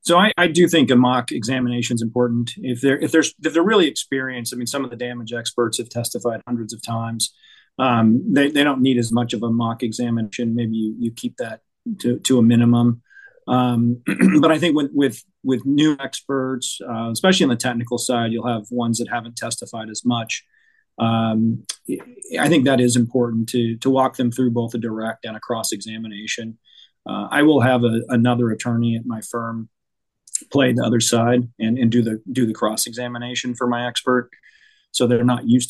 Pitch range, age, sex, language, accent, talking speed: 115-125 Hz, 40-59, male, English, American, 200 wpm